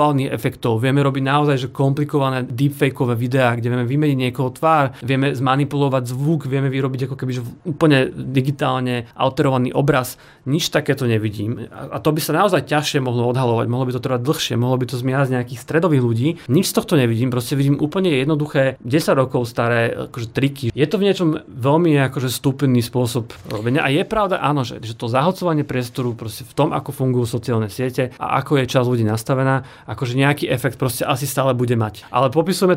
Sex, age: male, 30-49